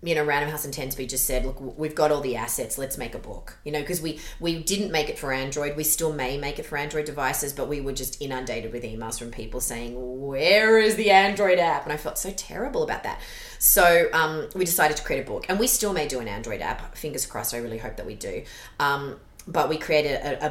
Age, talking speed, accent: 30-49, 255 wpm, Australian